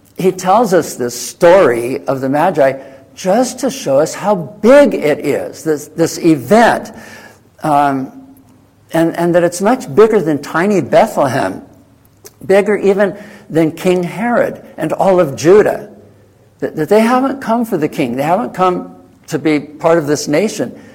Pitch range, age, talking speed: 120-180 Hz, 60-79, 160 wpm